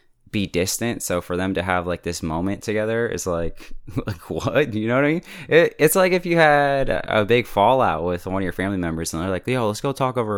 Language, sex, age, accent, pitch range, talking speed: English, male, 20-39, American, 85-115 Hz, 255 wpm